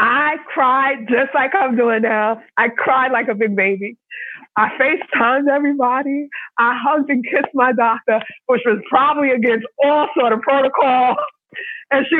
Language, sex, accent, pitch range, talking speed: English, female, American, 230-295 Hz, 155 wpm